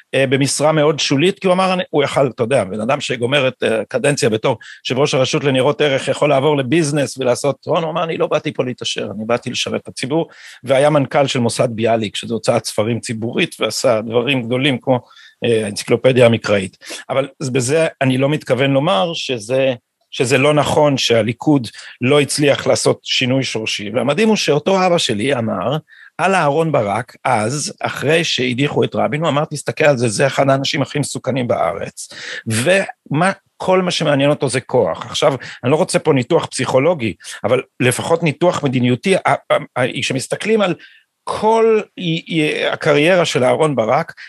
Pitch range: 130-160 Hz